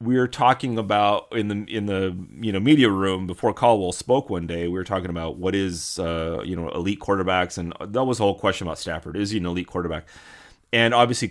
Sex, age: male, 30-49